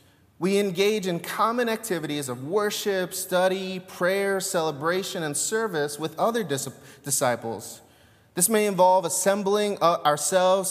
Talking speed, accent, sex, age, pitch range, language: 110 wpm, American, male, 30-49, 140-200 Hz, English